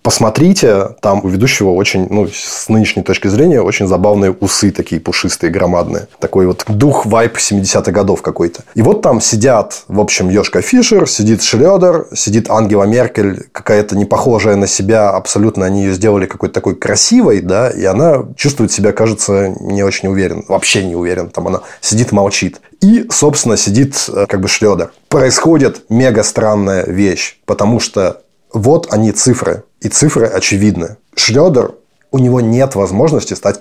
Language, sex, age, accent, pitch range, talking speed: Russian, male, 20-39, native, 100-125 Hz, 155 wpm